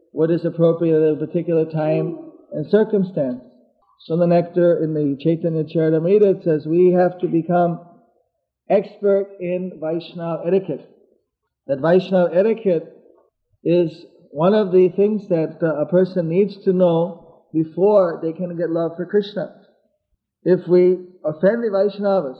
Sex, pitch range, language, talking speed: male, 165-195 Hz, English, 135 wpm